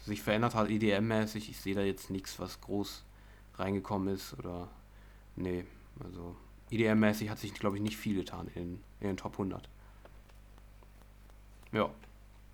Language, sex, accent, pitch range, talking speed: German, male, German, 100-125 Hz, 145 wpm